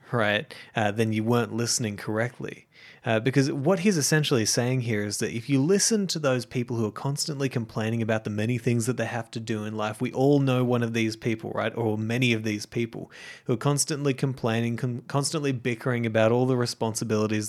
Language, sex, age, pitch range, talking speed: English, male, 20-39, 110-135 Hz, 205 wpm